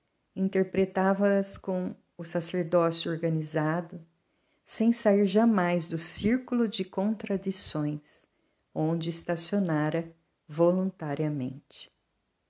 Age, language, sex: 50-69, Portuguese, female